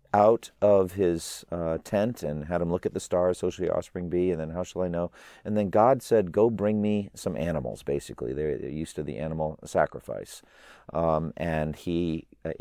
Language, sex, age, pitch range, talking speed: English, male, 40-59, 80-115 Hz, 205 wpm